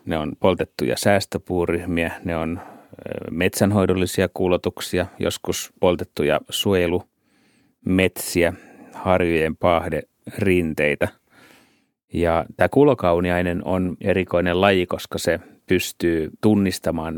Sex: male